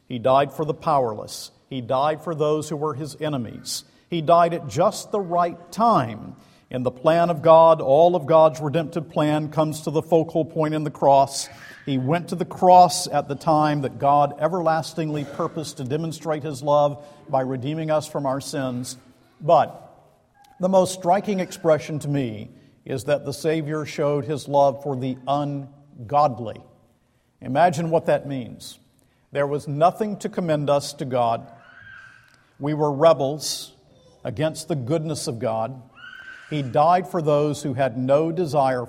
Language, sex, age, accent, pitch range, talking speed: English, male, 50-69, American, 135-165 Hz, 160 wpm